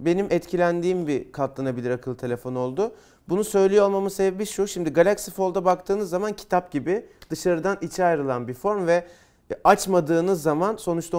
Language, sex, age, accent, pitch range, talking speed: Turkish, male, 40-59, native, 160-195 Hz, 150 wpm